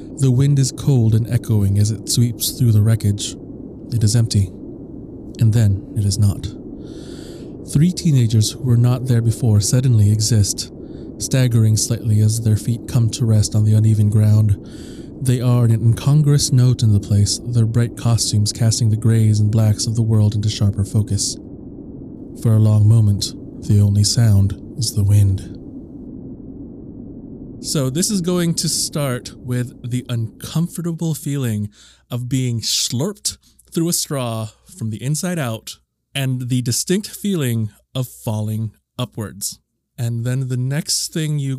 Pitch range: 110-130 Hz